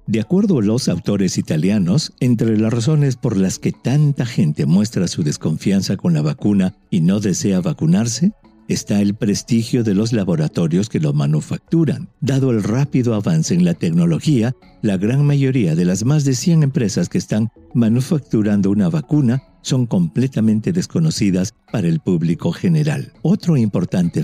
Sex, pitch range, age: male, 110-170 Hz, 50-69